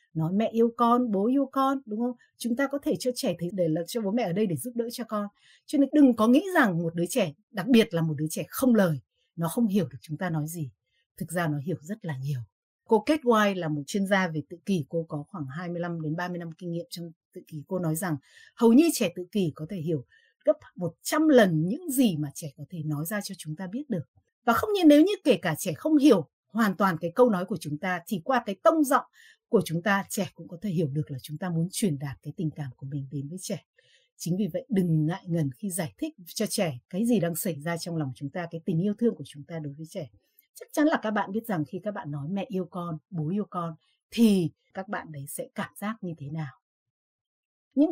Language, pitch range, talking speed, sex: Vietnamese, 160-230 Hz, 265 wpm, female